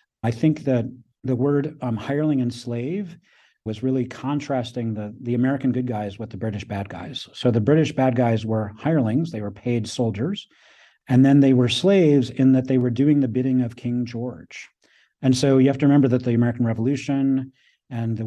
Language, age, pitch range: English, 40-59, 110-130 Hz